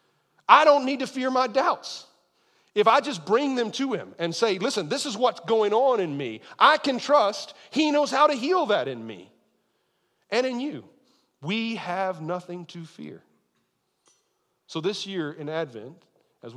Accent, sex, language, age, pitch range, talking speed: American, male, English, 40-59, 170-255 Hz, 180 wpm